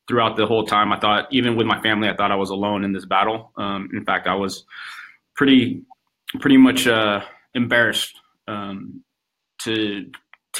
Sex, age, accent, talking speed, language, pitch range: male, 20-39, American, 175 wpm, English, 105-115 Hz